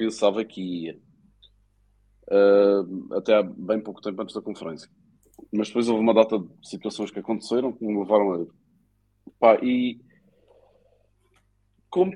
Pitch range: 95-110 Hz